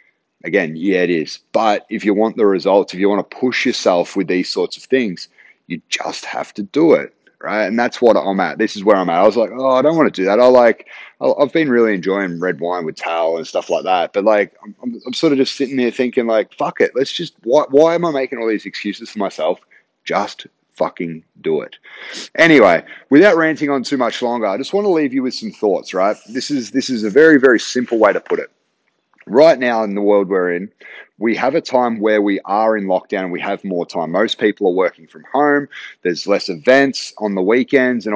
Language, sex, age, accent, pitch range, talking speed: English, male, 30-49, Australian, 100-140 Hz, 240 wpm